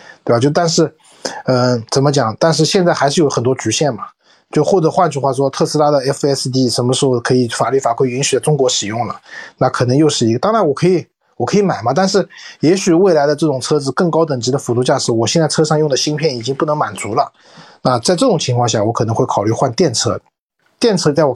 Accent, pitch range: native, 130-175 Hz